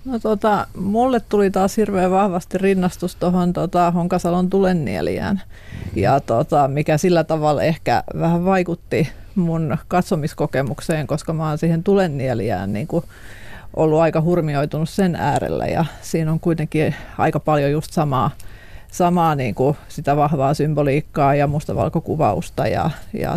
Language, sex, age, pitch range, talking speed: Finnish, female, 40-59, 145-175 Hz, 125 wpm